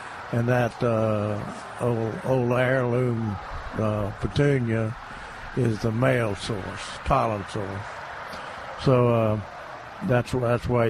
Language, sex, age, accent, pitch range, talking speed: English, male, 60-79, American, 110-130 Hz, 105 wpm